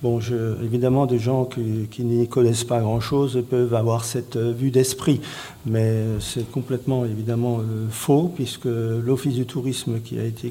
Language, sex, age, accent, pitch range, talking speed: French, male, 50-69, French, 125-145 Hz, 155 wpm